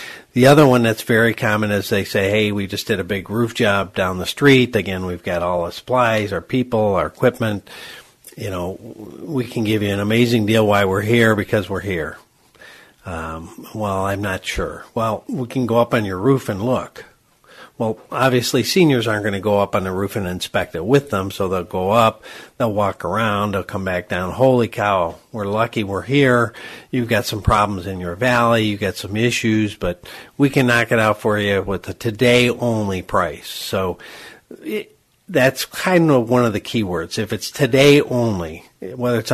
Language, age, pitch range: English, 50-69, 95-120 Hz